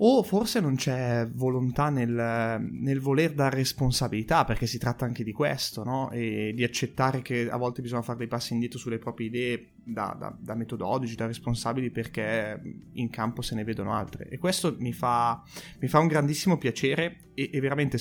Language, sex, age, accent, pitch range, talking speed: Italian, male, 20-39, native, 115-140 Hz, 185 wpm